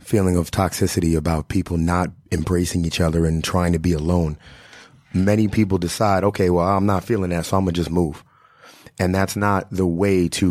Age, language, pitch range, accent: 30-49, English, 90-105 Hz, American